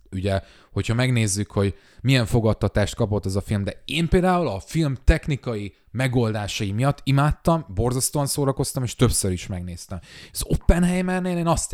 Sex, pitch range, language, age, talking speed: male, 100-140 Hz, Hungarian, 30-49, 155 wpm